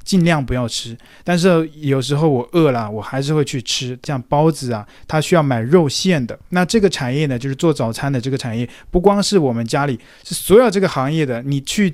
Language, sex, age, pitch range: Chinese, male, 20-39, 130-165 Hz